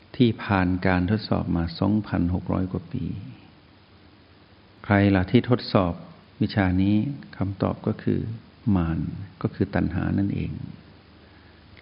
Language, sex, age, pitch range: Thai, male, 60-79, 95-110 Hz